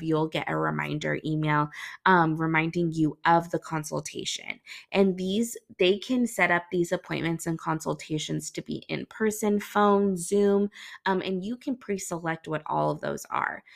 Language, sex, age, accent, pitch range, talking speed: English, female, 20-39, American, 160-200 Hz, 160 wpm